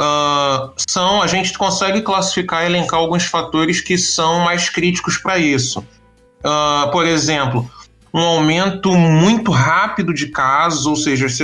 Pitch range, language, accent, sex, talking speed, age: 140-180 Hz, Portuguese, Brazilian, male, 130 wpm, 20-39